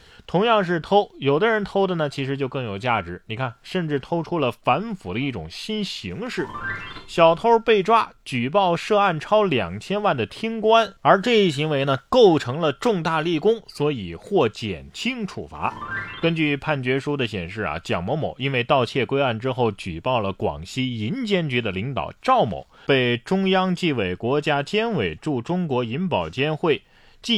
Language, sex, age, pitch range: Chinese, male, 30-49, 115-180 Hz